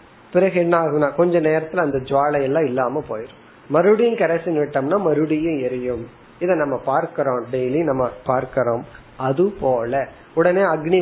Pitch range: 130-170 Hz